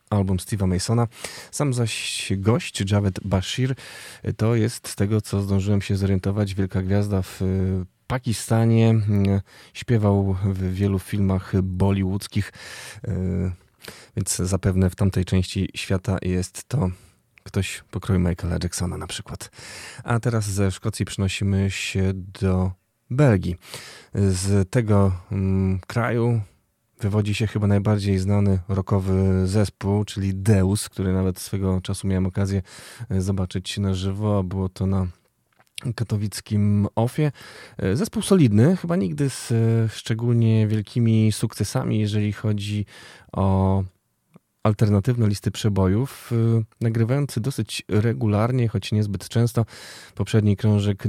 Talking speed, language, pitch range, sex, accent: 115 wpm, Polish, 95-110 Hz, male, native